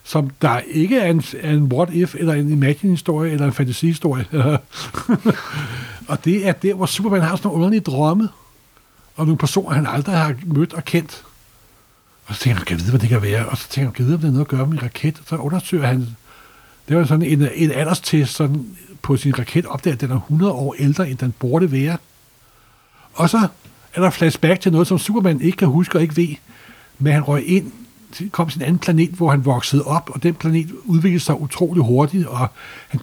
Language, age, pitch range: Danish, 60-79, 140-175 Hz